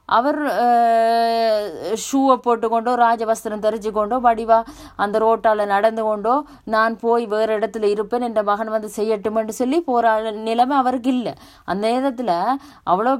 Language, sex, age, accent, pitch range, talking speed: Tamil, female, 20-39, native, 185-240 Hz, 125 wpm